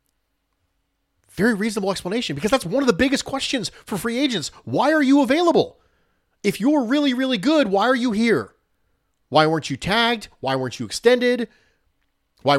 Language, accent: English, American